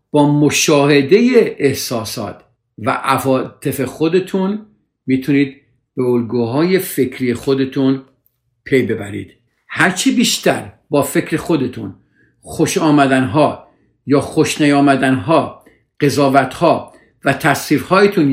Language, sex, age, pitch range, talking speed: Persian, male, 50-69, 120-150 Hz, 85 wpm